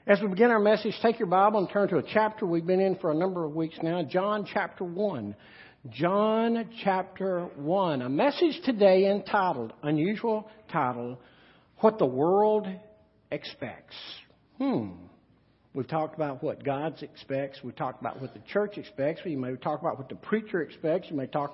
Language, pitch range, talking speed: English, 135-200 Hz, 175 wpm